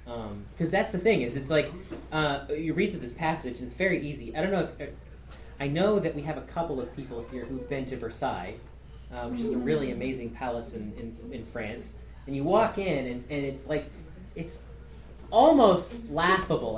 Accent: American